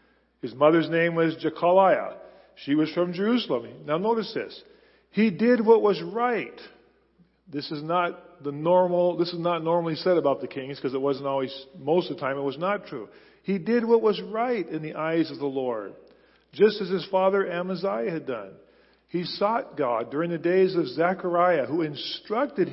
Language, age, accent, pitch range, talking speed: English, 50-69, American, 155-195 Hz, 185 wpm